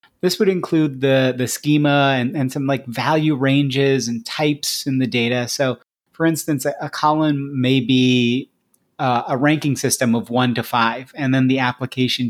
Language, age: English, 30-49